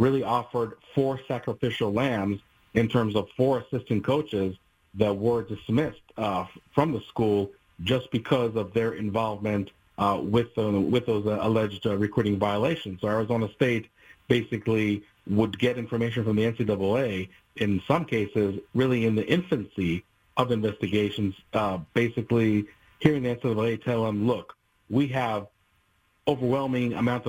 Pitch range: 105-125 Hz